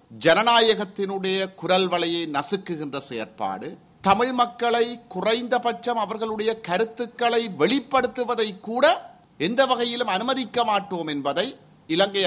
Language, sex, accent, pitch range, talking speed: Tamil, male, native, 200-260 Hz, 80 wpm